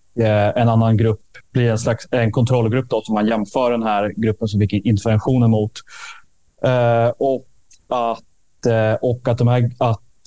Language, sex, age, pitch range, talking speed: Swedish, male, 20-39, 110-125 Hz, 165 wpm